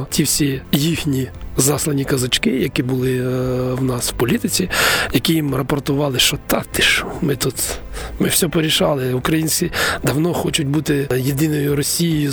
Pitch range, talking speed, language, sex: 135-165 Hz, 145 wpm, Ukrainian, male